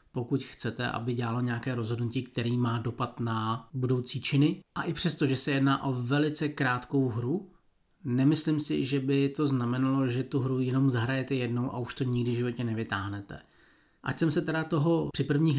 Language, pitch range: Czech, 125-145 Hz